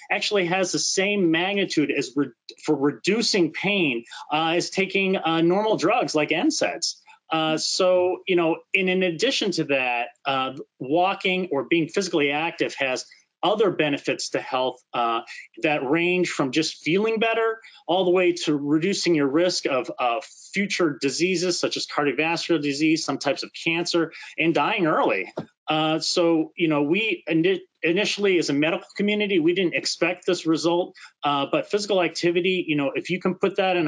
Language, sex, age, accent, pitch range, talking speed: English, male, 30-49, American, 155-190 Hz, 170 wpm